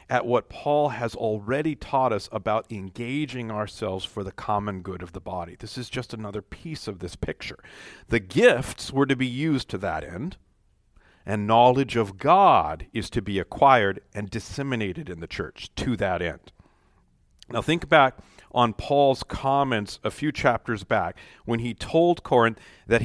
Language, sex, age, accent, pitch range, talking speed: English, male, 40-59, American, 105-145 Hz, 170 wpm